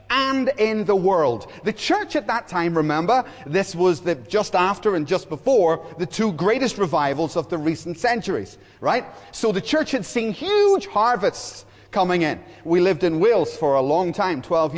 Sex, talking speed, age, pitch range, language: male, 185 wpm, 30-49, 170-230 Hz, English